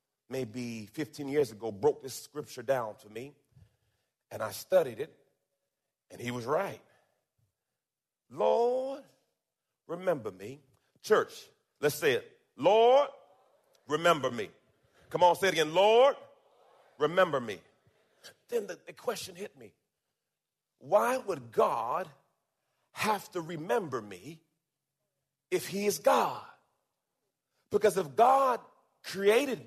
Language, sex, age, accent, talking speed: English, male, 40-59, American, 115 wpm